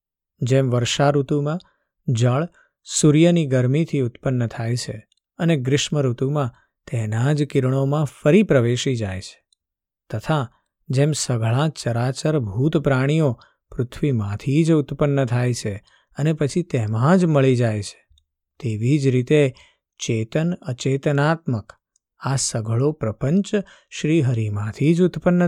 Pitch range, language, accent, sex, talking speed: 120-155 Hz, Gujarati, native, male, 95 wpm